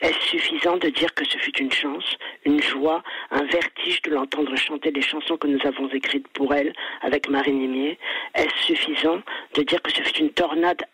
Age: 50-69